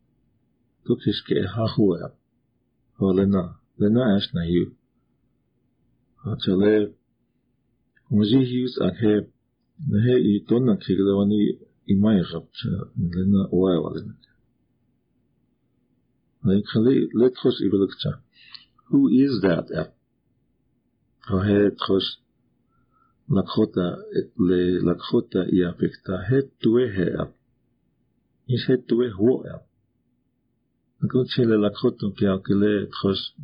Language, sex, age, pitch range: English, male, 50-69, 100-125 Hz